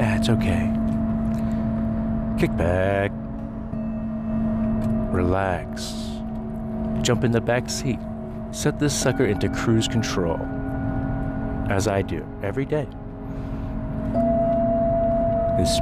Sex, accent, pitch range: male, American, 105-130 Hz